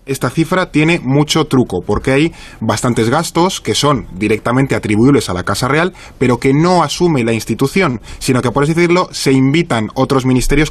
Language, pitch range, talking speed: Spanish, 110-150 Hz, 180 wpm